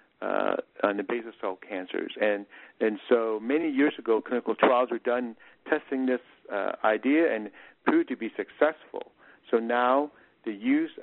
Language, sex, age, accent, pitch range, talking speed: English, male, 50-69, American, 110-150 Hz, 160 wpm